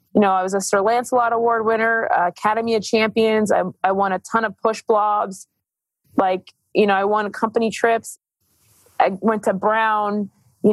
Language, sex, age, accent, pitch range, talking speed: English, female, 20-39, American, 195-230 Hz, 185 wpm